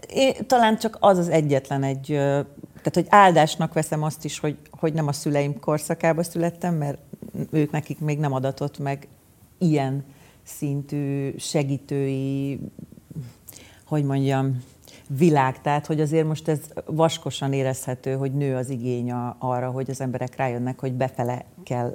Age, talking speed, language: 40-59, 140 wpm, Hungarian